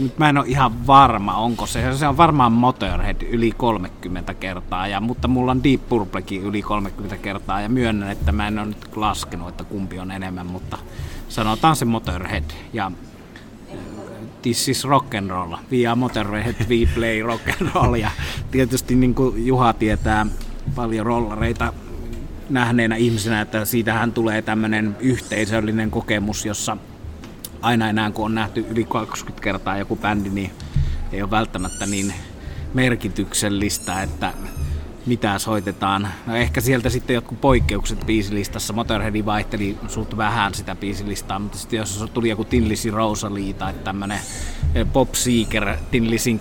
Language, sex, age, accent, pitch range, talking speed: Finnish, male, 30-49, native, 100-115 Hz, 140 wpm